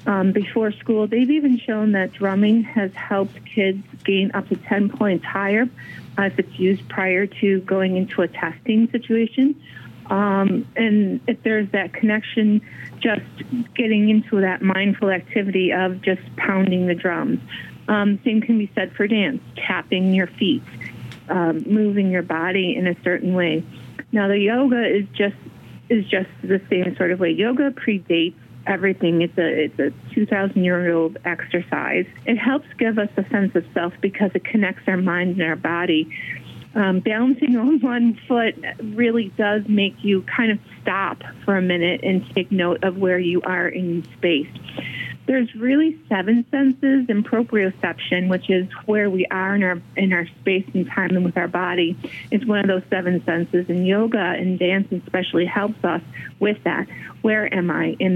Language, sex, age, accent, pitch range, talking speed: English, female, 40-59, American, 180-215 Hz, 170 wpm